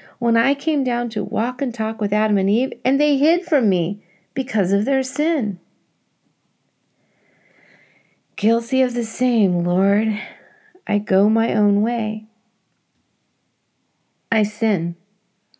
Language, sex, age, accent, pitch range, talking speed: English, female, 40-59, American, 200-260 Hz, 125 wpm